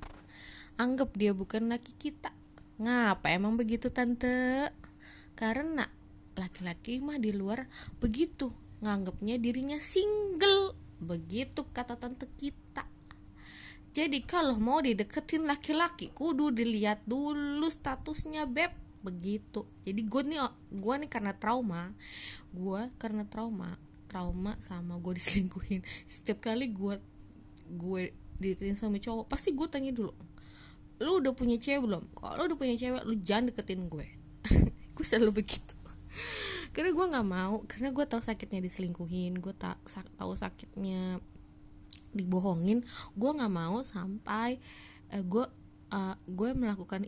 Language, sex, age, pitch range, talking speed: Indonesian, female, 20-39, 185-250 Hz, 125 wpm